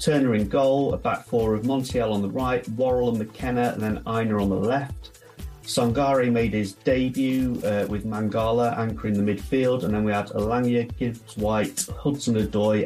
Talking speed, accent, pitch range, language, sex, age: 175 wpm, British, 105-125 Hz, English, male, 30-49